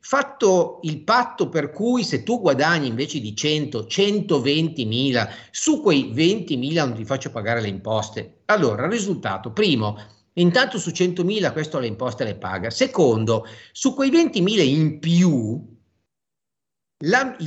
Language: Italian